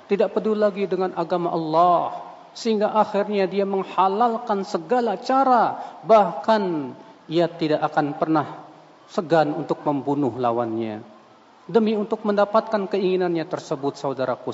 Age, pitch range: 40-59, 155-215 Hz